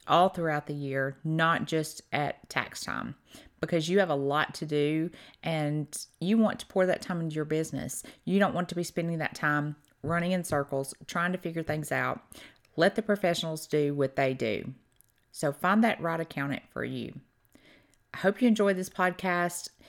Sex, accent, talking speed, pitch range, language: female, American, 185 wpm, 150-195 Hz, English